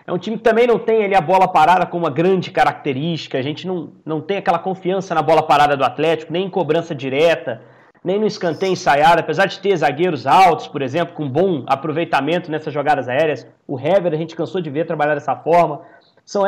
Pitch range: 160-195 Hz